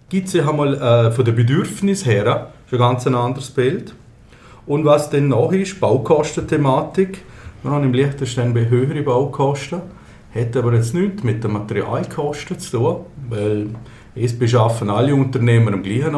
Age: 50-69